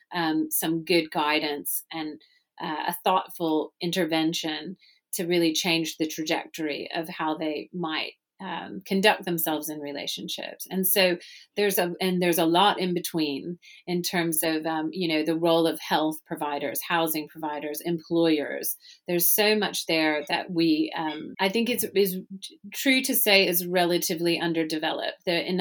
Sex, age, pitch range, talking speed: female, 30-49, 160-180 Hz, 150 wpm